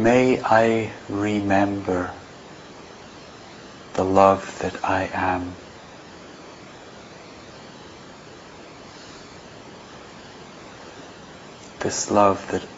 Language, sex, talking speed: English, male, 50 wpm